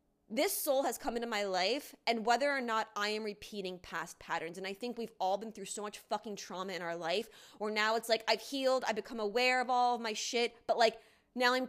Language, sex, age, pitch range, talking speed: English, female, 20-39, 205-240 Hz, 245 wpm